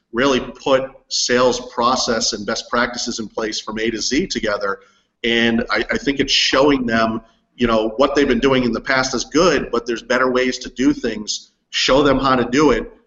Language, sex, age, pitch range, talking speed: English, male, 40-59, 115-130 Hz, 205 wpm